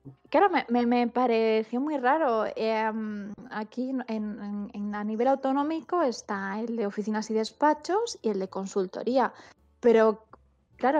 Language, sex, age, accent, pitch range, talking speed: Spanish, female, 20-39, Spanish, 205-230 Hz, 125 wpm